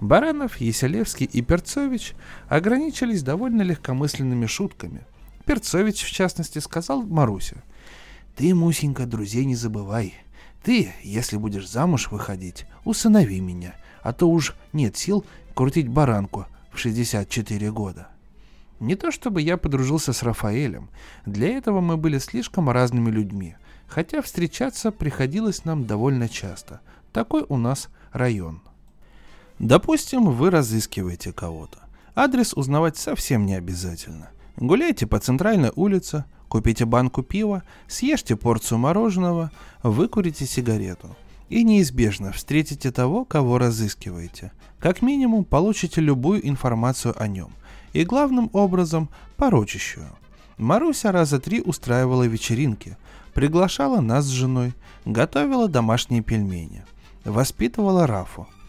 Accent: native